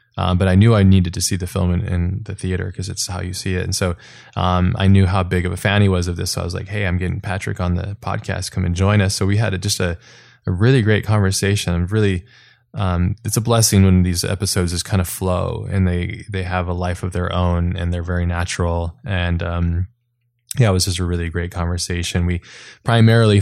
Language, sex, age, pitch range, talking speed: English, male, 20-39, 90-100 Hz, 245 wpm